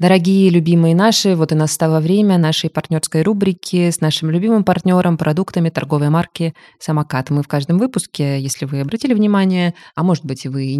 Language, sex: Russian, female